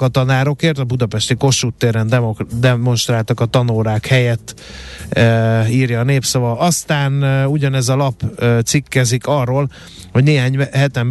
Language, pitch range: Hungarian, 115-135 Hz